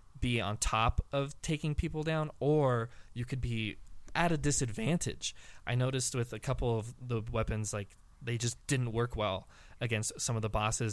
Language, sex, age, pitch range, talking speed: English, male, 20-39, 105-130 Hz, 180 wpm